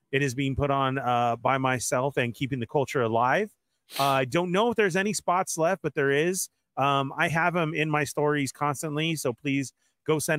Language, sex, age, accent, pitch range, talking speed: English, male, 30-49, American, 125-155 Hz, 215 wpm